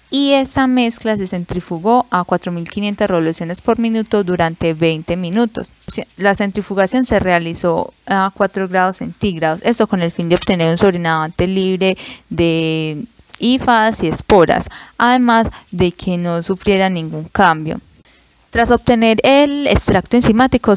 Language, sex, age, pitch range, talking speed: Spanish, female, 10-29, 175-215 Hz, 135 wpm